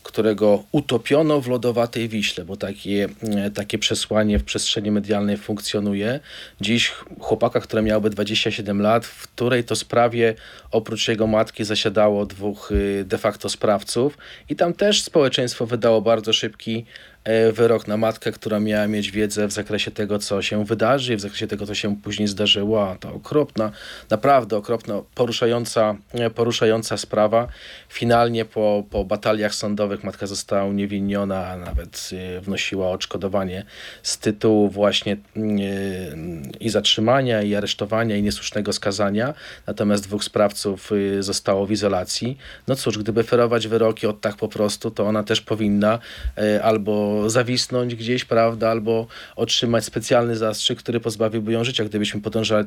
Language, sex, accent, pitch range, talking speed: Polish, male, native, 105-115 Hz, 140 wpm